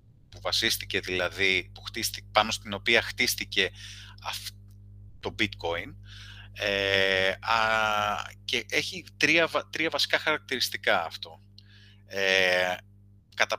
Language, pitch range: Greek, 100-110 Hz